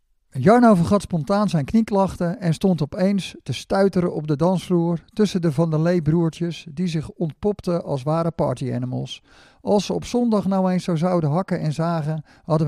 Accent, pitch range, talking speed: Dutch, 145-180 Hz, 175 wpm